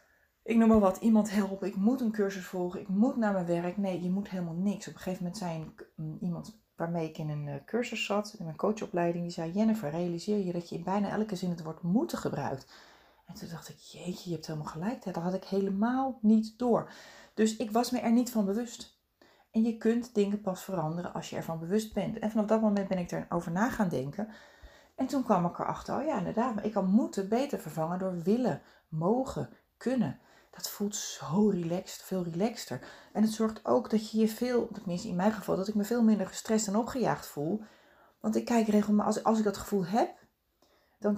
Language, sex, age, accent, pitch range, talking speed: Dutch, female, 30-49, Dutch, 175-220 Hz, 215 wpm